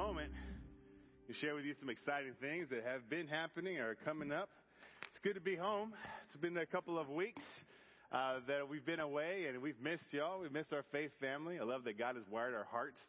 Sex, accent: male, American